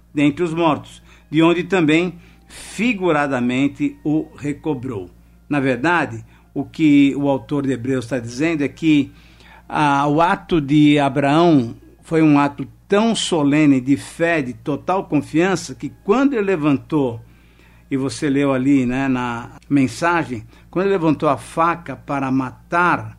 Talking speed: 140 wpm